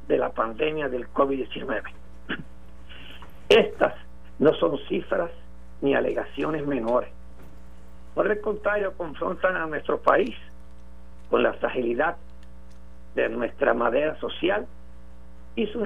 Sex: male